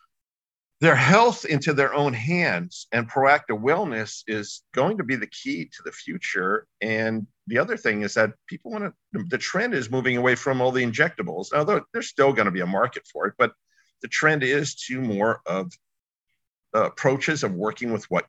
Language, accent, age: English, American, 50-69